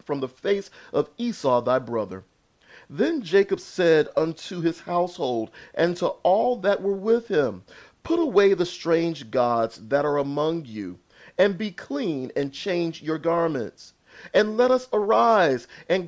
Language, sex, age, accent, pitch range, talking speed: English, male, 40-59, American, 145-210 Hz, 155 wpm